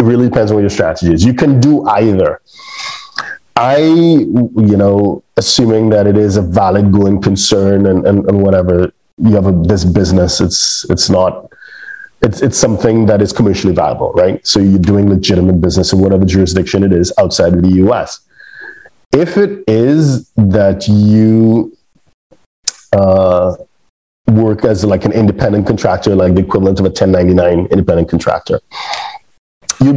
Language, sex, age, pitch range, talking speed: English, male, 30-49, 95-115 Hz, 155 wpm